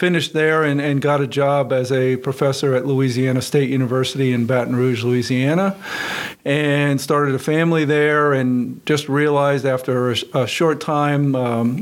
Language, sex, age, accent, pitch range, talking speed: English, male, 50-69, American, 130-145 Hz, 165 wpm